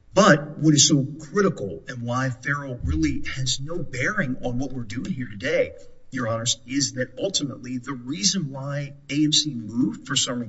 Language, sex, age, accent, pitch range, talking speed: English, male, 50-69, American, 120-150 Hz, 170 wpm